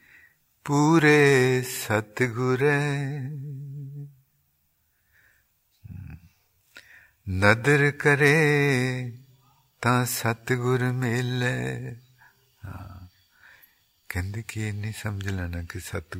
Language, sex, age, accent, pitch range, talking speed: English, male, 50-69, Indian, 80-125 Hz, 35 wpm